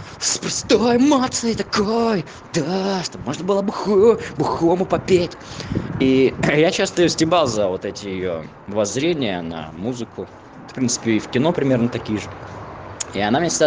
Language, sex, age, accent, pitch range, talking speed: Russian, male, 20-39, native, 115-165 Hz, 155 wpm